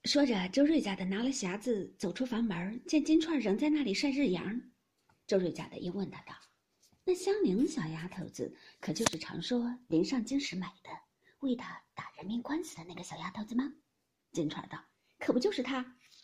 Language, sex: Chinese, female